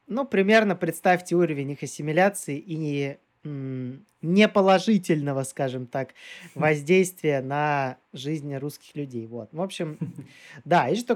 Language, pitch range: Russian, 145-185 Hz